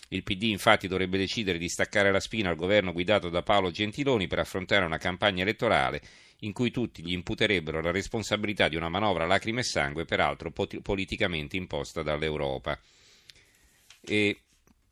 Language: Italian